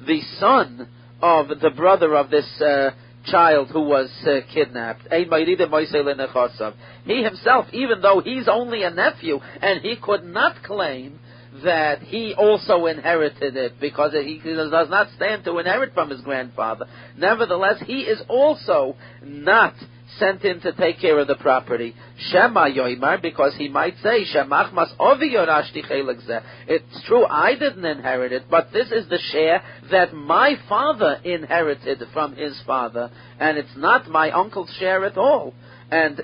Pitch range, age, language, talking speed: 130-190 Hz, 50-69, English, 145 wpm